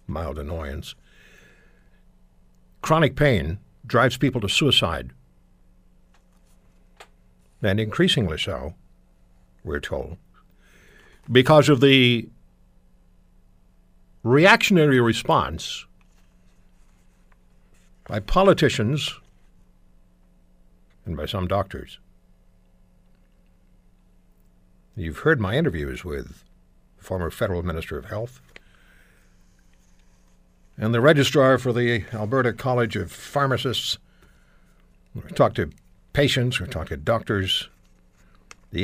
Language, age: English, 60-79